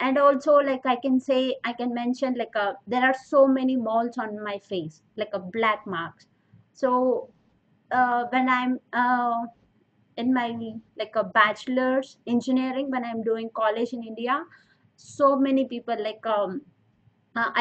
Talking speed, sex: 155 wpm, female